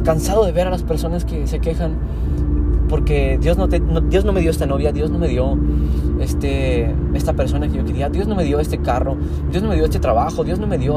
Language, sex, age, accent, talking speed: Spanish, male, 20-39, Mexican, 250 wpm